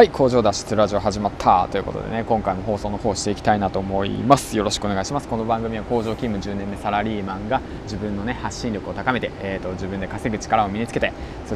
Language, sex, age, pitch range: Japanese, male, 20-39, 100-135 Hz